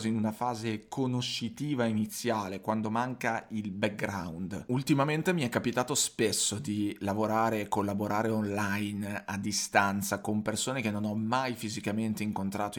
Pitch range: 100-120 Hz